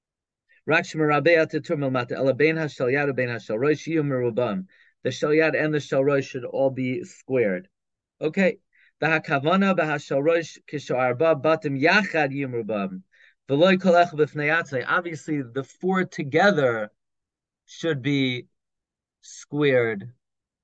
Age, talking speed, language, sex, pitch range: 30-49, 50 wpm, English, male, 130-165 Hz